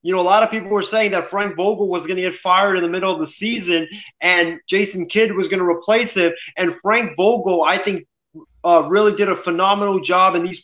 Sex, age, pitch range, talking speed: male, 20-39, 180-205 Hz, 245 wpm